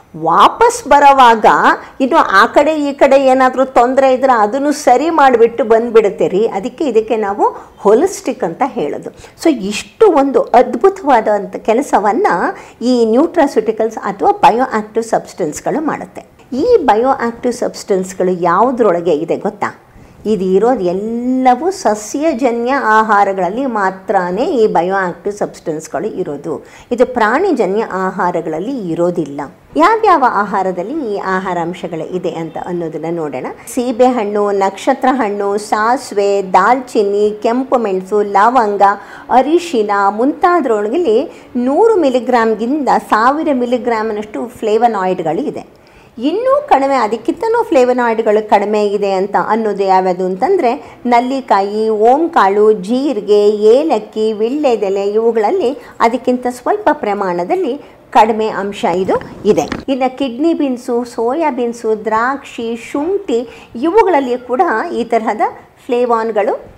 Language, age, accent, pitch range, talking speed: Kannada, 50-69, native, 205-270 Hz, 100 wpm